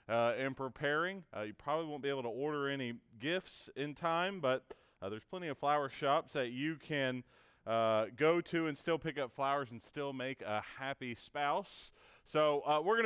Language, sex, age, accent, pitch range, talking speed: English, male, 30-49, American, 120-160 Hz, 200 wpm